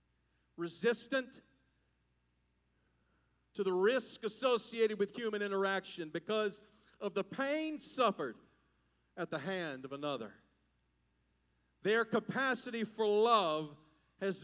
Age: 40-59